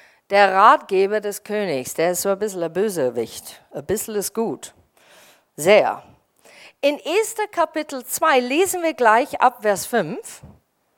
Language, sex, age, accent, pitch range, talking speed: German, female, 50-69, German, 180-255 Hz, 140 wpm